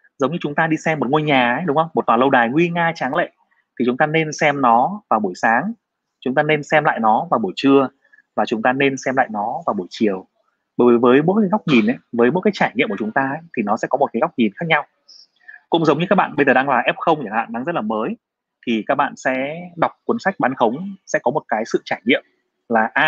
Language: Vietnamese